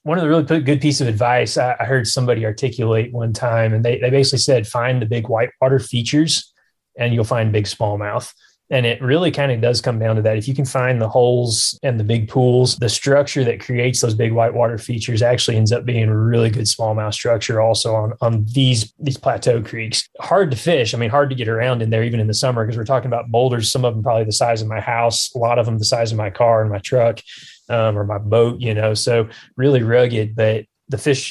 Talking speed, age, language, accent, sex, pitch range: 240 wpm, 20-39, English, American, male, 110-125 Hz